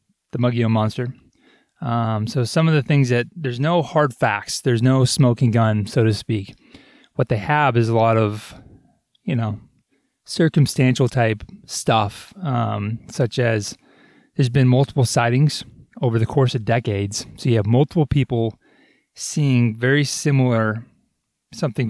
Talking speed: 150 wpm